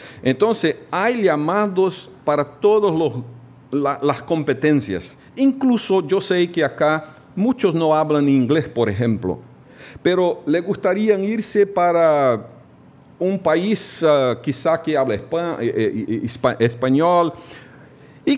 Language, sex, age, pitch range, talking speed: Portuguese, male, 50-69, 135-195 Hz, 105 wpm